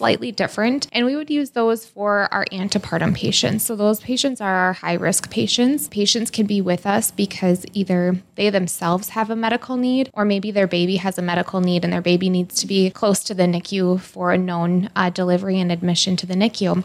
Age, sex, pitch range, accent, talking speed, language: 20-39, female, 190-215 Hz, American, 215 wpm, English